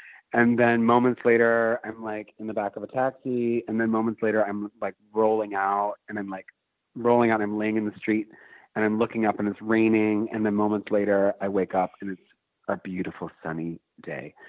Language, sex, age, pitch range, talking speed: English, male, 40-59, 105-135 Hz, 205 wpm